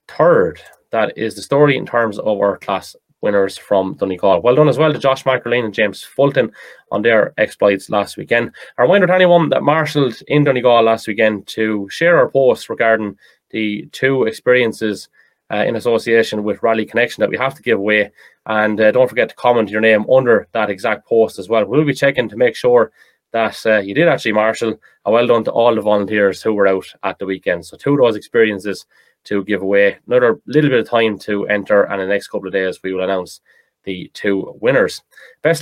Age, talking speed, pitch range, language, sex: 20-39, 210 wpm, 100-150 Hz, English, male